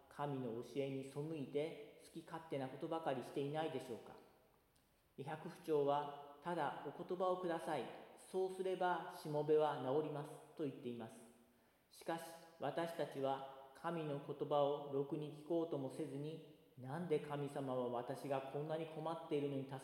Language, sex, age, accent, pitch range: Japanese, male, 40-59, native, 135-160 Hz